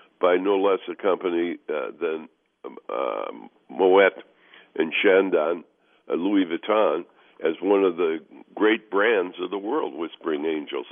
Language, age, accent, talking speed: English, 60-79, American, 145 wpm